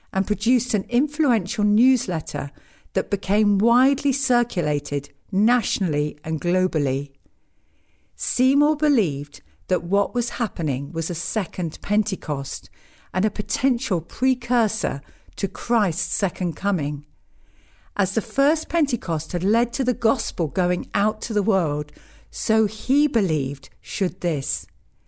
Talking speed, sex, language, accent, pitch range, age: 115 wpm, female, English, British, 160-230 Hz, 50-69